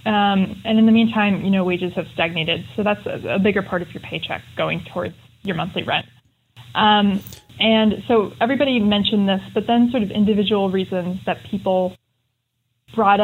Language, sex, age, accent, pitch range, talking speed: English, female, 20-39, American, 180-210 Hz, 175 wpm